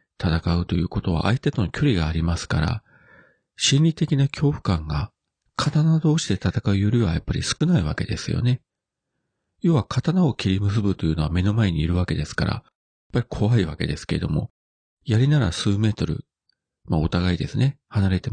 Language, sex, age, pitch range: Japanese, male, 40-59, 85-125 Hz